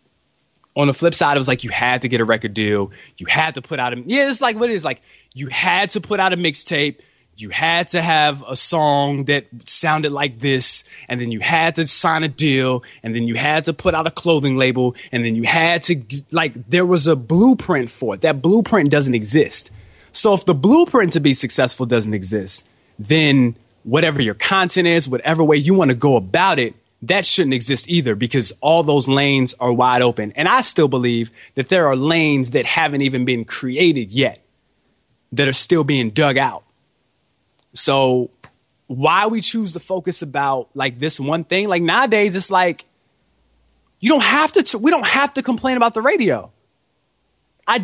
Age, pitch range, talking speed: 20-39, 125-190 Hz, 200 wpm